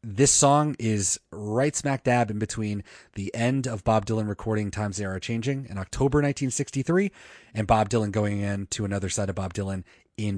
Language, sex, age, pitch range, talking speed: English, male, 30-49, 100-120 Hz, 190 wpm